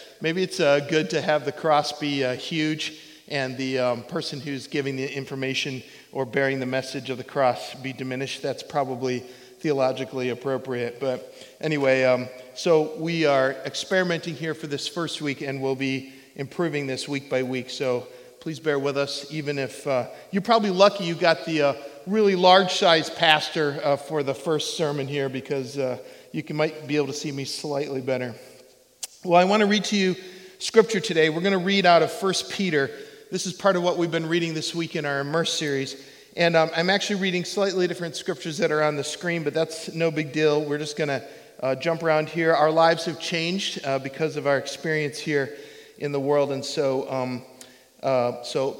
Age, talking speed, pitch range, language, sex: 40-59, 200 wpm, 135-170 Hz, English, male